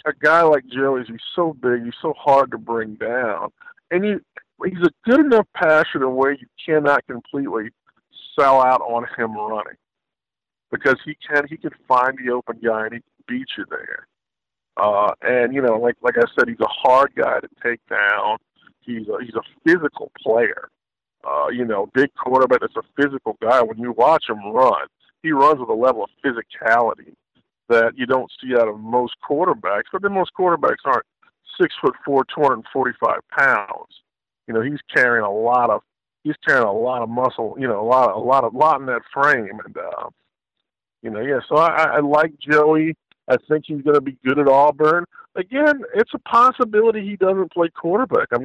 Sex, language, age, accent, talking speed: male, English, 50-69, American, 200 wpm